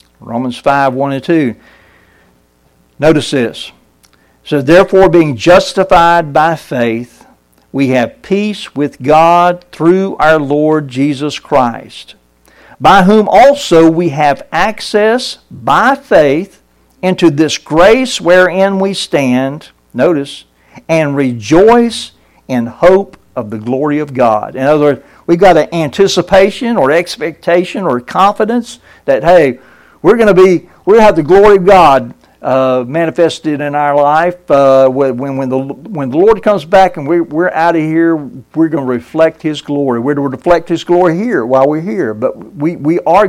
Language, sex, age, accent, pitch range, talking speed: English, male, 60-79, American, 135-185 Hz, 155 wpm